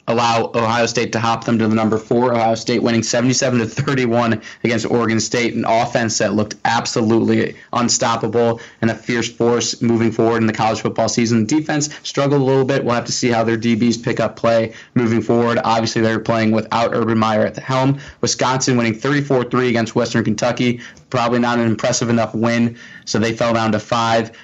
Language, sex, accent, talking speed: English, male, American, 195 wpm